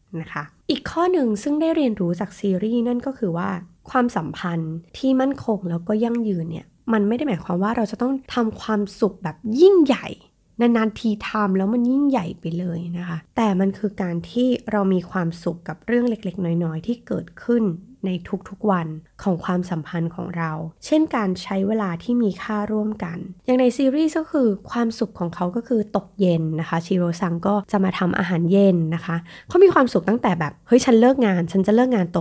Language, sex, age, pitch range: Thai, female, 20-39, 175-235 Hz